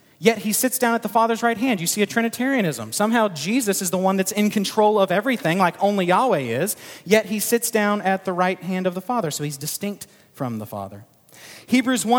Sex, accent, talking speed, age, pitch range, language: male, American, 220 wpm, 30-49, 170-235 Hz, English